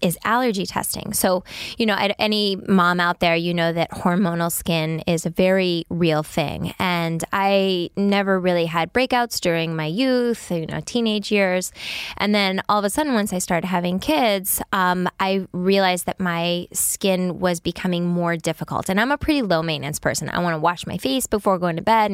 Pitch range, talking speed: 170-210 Hz, 190 wpm